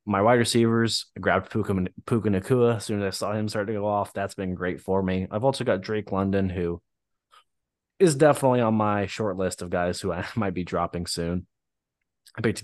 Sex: male